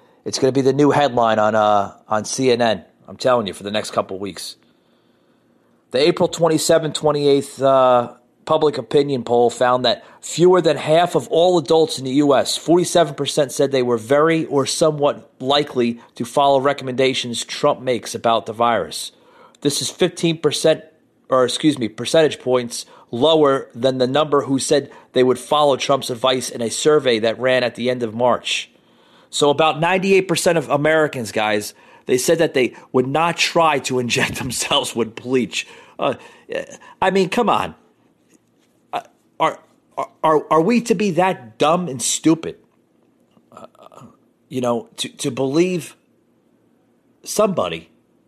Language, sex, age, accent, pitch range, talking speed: English, male, 30-49, American, 125-160 Hz, 160 wpm